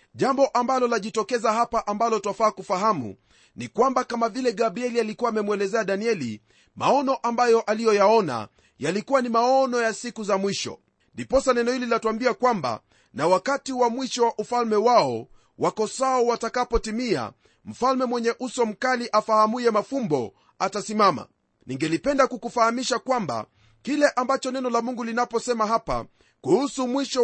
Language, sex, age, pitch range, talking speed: Swahili, male, 40-59, 215-255 Hz, 130 wpm